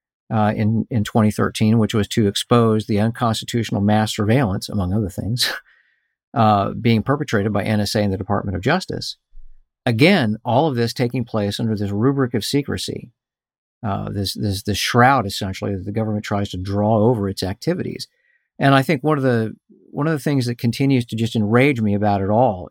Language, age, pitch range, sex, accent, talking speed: English, 50-69, 105-130 Hz, male, American, 185 wpm